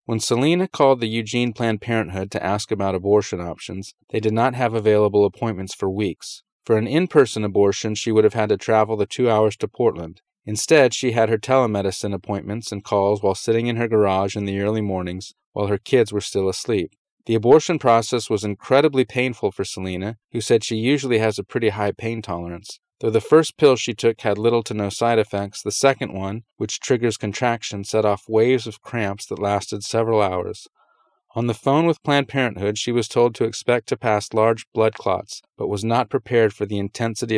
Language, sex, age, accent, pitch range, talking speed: English, male, 30-49, American, 100-120 Hz, 200 wpm